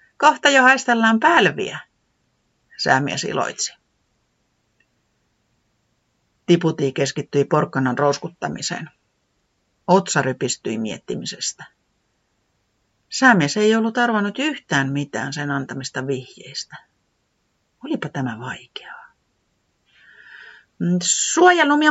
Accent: native